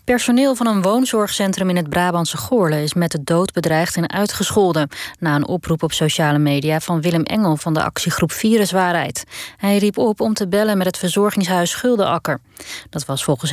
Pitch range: 155-210 Hz